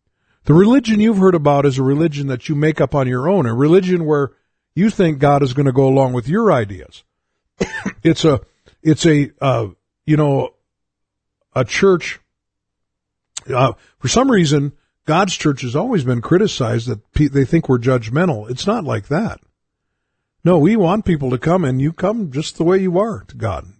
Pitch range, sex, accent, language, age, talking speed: 130-175 Hz, male, American, English, 50-69, 185 wpm